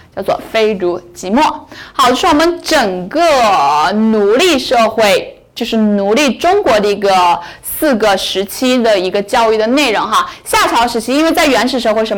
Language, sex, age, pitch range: Chinese, female, 10-29, 195-275 Hz